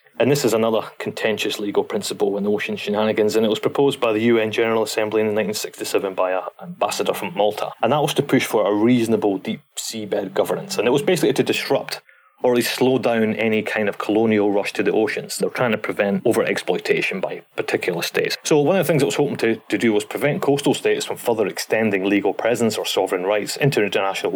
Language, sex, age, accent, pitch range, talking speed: English, male, 30-49, British, 105-135 Hz, 220 wpm